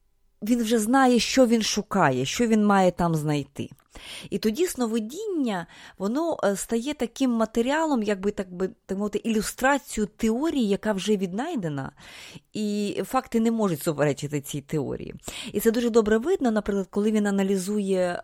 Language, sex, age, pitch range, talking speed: Ukrainian, female, 30-49, 150-215 Hz, 145 wpm